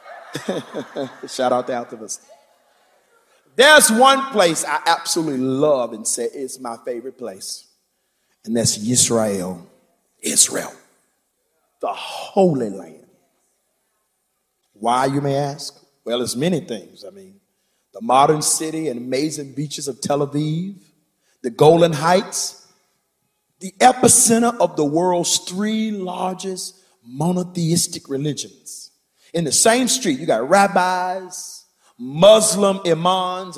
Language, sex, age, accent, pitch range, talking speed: English, male, 40-59, American, 145-210 Hz, 115 wpm